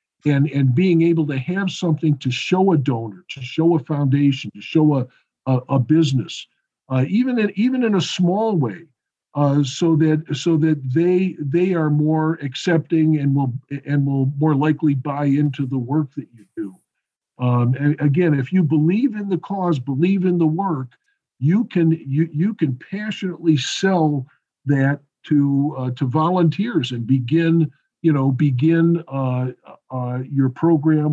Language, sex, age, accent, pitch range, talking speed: English, male, 50-69, American, 135-165 Hz, 165 wpm